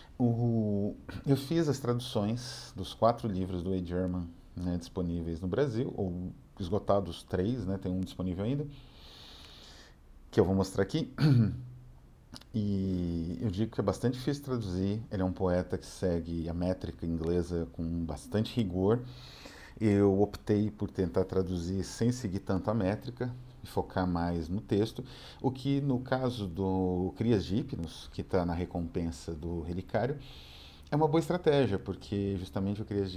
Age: 40-59